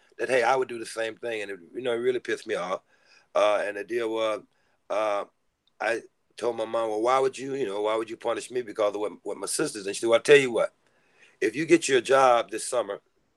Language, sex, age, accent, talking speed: English, male, 40-59, American, 265 wpm